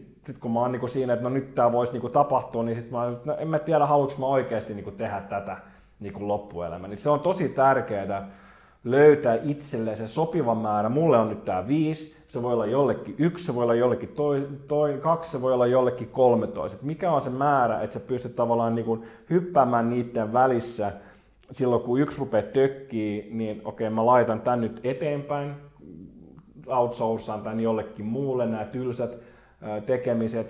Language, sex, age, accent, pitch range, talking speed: Finnish, male, 30-49, native, 105-130 Hz, 170 wpm